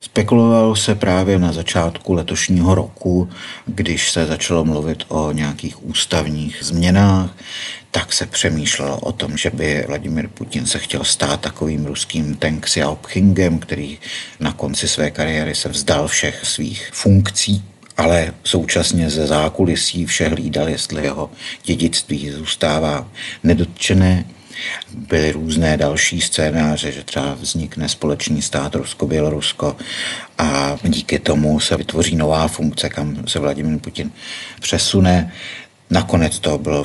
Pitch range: 75-90 Hz